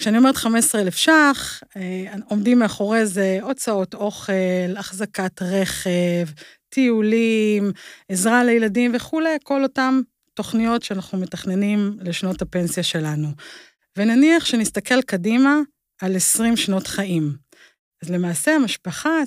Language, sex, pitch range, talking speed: Hebrew, female, 185-245 Hz, 105 wpm